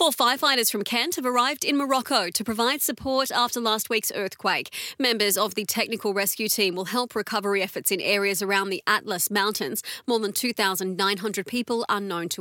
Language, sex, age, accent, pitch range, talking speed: English, female, 30-49, Australian, 200-240 Hz, 185 wpm